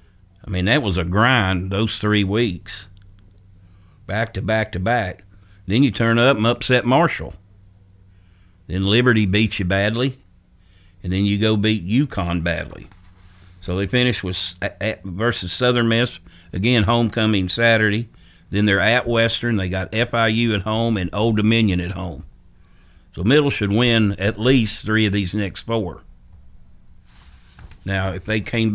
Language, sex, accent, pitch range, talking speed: English, male, American, 90-115 Hz, 150 wpm